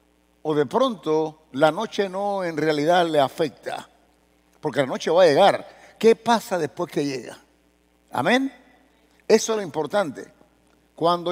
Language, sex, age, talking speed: English, male, 60-79, 145 wpm